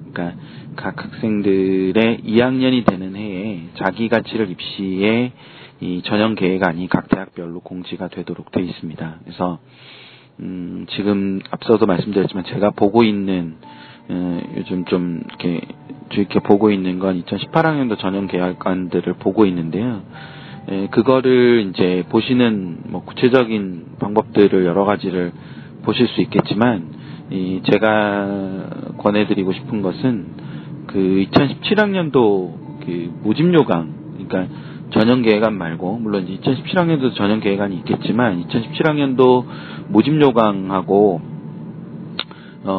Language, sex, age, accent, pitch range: Korean, male, 40-59, native, 90-115 Hz